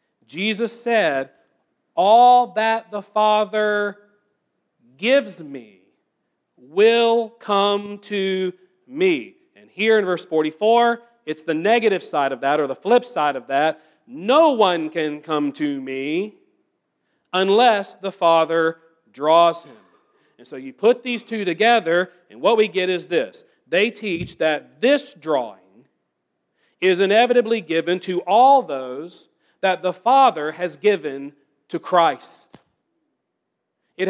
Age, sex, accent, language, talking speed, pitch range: 40-59, male, American, English, 125 wpm, 175-235 Hz